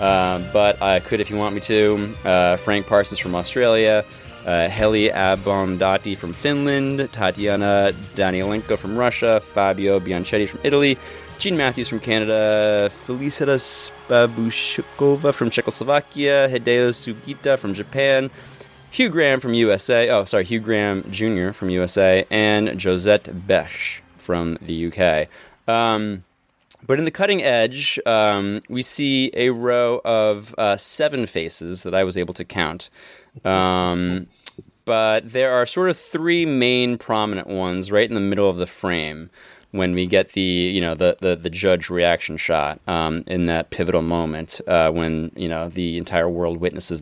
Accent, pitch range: American, 90-120 Hz